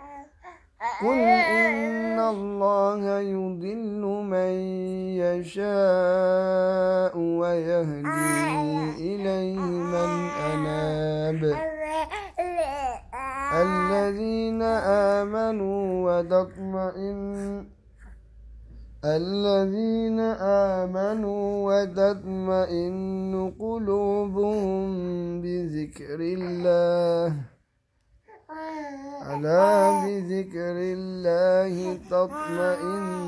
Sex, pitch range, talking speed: male, 165-200 Hz, 35 wpm